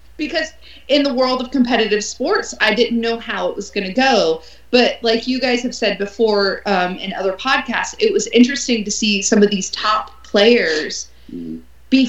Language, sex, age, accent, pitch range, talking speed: English, female, 20-39, American, 185-235 Hz, 185 wpm